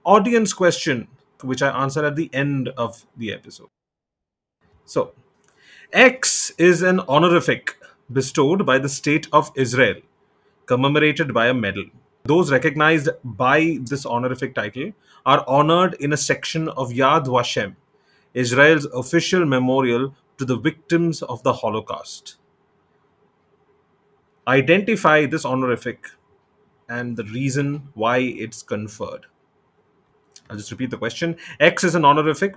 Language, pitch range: English, 125-160 Hz